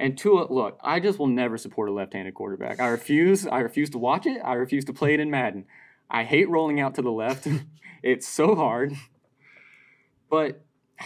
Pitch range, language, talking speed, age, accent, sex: 120-145 Hz, English, 200 wpm, 20-39, American, male